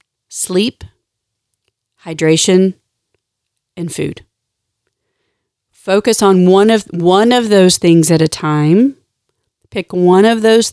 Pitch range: 155-185 Hz